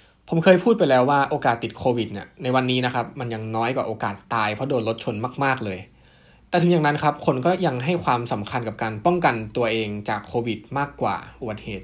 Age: 20-39